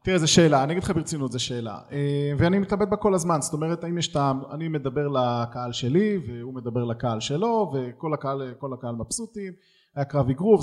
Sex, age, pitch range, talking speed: male, 20-39, 125-160 Hz, 180 wpm